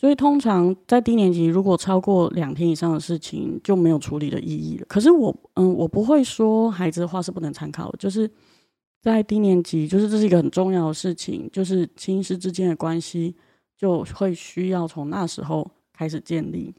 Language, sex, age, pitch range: Chinese, female, 20-39, 160-190 Hz